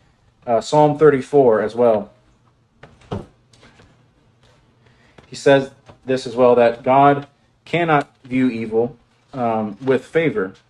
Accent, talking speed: American, 100 wpm